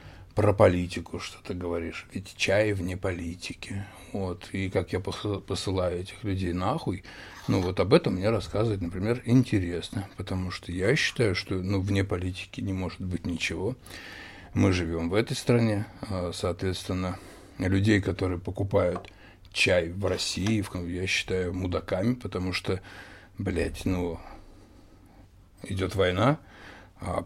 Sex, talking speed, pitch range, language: male, 130 wpm, 90-100 Hz, Russian